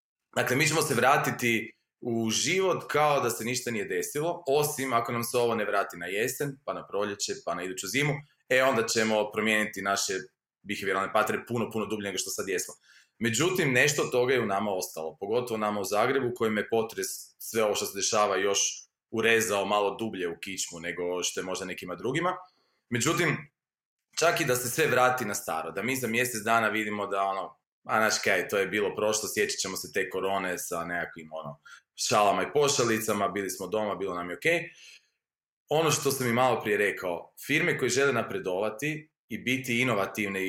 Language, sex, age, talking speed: Croatian, male, 30-49, 195 wpm